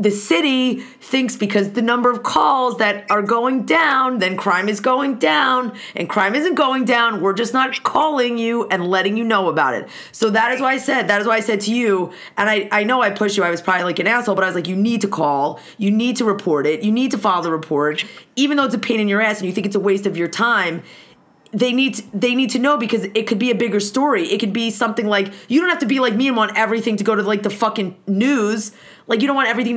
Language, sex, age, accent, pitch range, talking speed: English, female, 30-49, American, 205-260 Hz, 275 wpm